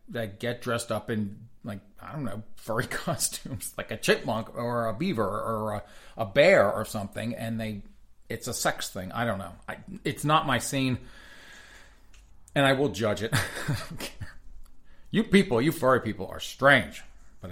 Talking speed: 175 wpm